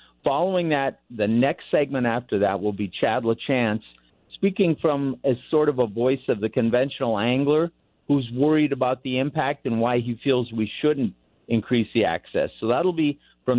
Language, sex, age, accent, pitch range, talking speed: English, male, 50-69, American, 120-150 Hz, 175 wpm